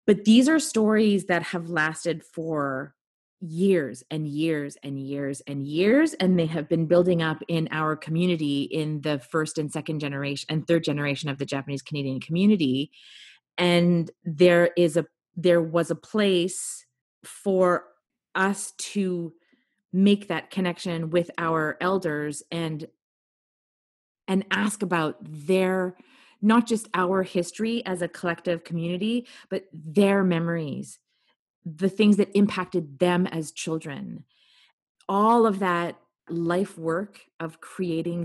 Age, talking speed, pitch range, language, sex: 30-49, 130 wpm, 160-200 Hz, English, female